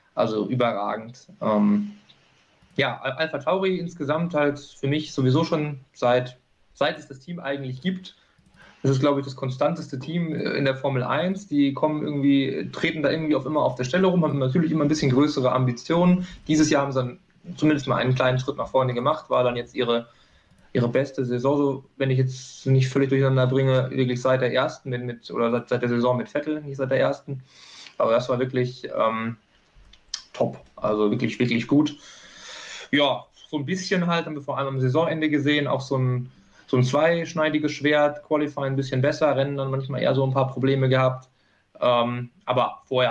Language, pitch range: German, 125-155 Hz